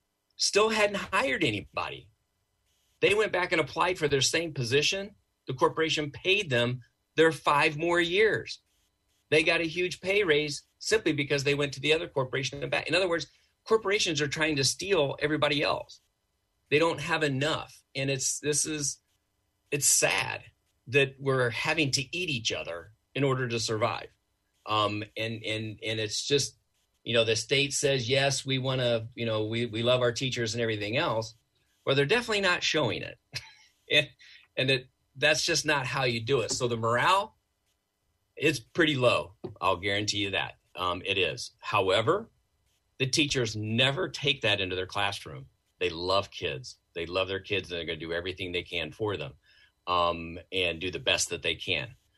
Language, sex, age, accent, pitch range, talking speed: English, male, 40-59, American, 105-155 Hz, 180 wpm